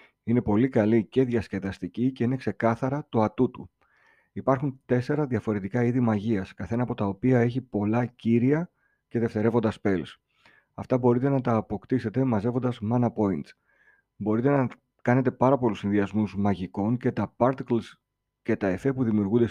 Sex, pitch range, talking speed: male, 100-125 Hz, 150 wpm